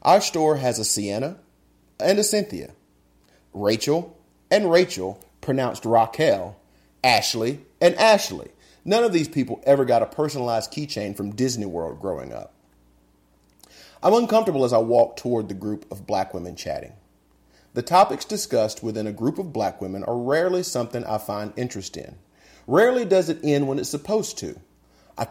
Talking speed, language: 160 wpm, English